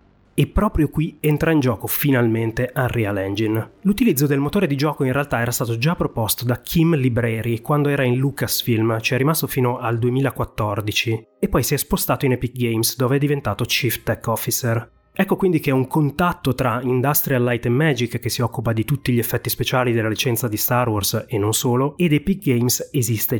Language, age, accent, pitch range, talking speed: Italian, 30-49, native, 115-150 Hz, 195 wpm